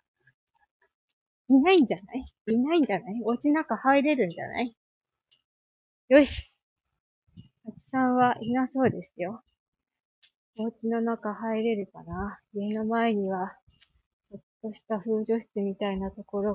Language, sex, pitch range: Japanese, female, 210-285 Hz